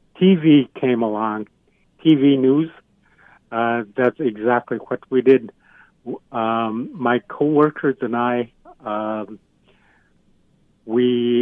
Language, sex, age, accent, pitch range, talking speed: English, male, 60-79, American, 110-130 Hz, 100 wpm